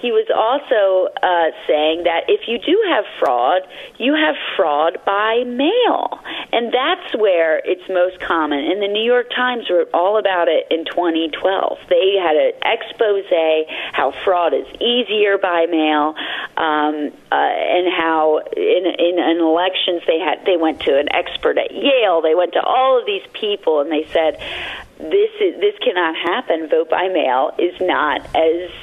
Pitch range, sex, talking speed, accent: 175-280 Hz, female, 170 wpm, American